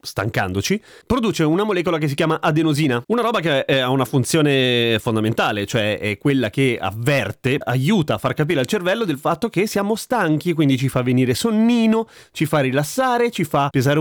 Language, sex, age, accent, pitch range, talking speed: Italian, male, 30-49, native, 125-180 Hz, 180 wpm